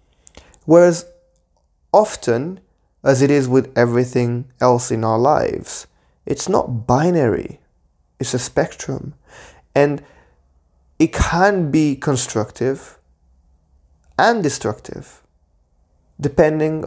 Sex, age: male, 20-39